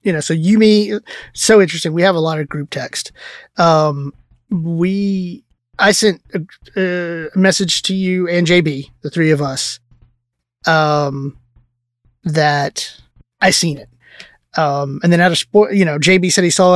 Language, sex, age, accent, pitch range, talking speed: English, male, 20-39, American, 155-195 Hz, 165 wpm